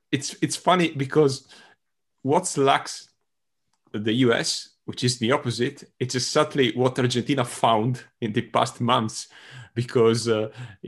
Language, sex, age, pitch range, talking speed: English, male, 30-49, 95-120 Hz, 125 wpm